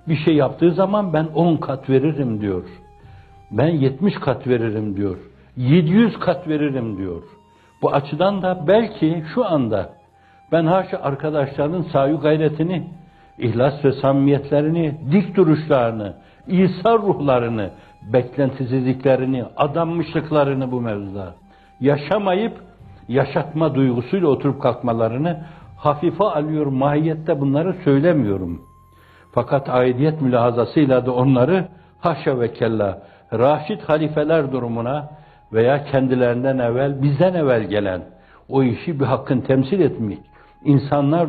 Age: 60-79